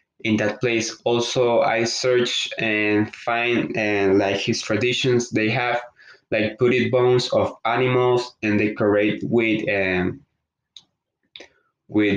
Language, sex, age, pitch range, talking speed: English, male, 20-39, 105-125 Hz, 125 wpm